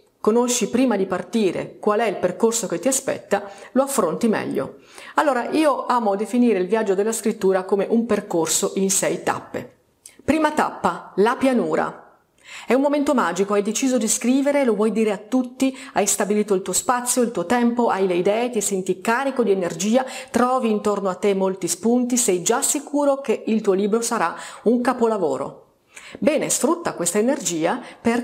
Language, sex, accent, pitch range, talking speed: Italian, female, native, 195-255 Hz, 175 wpm